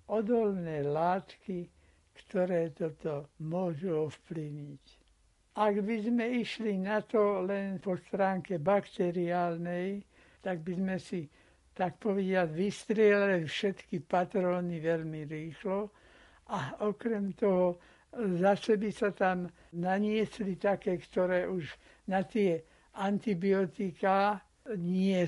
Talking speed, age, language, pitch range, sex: 100 wpm, 60-79, Slovak, 170-205 Hz, male